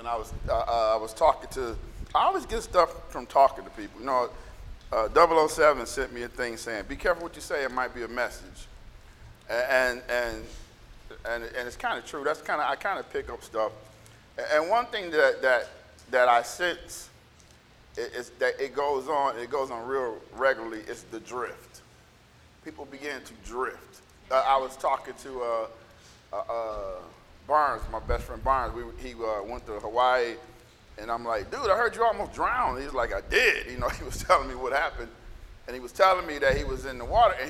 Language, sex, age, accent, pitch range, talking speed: English, male, 40-59, American, 115-180 Hz, 205 wpm